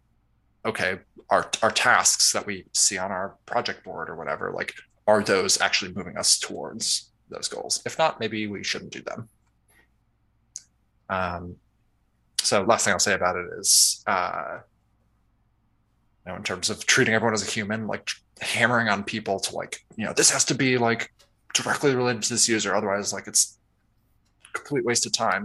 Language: English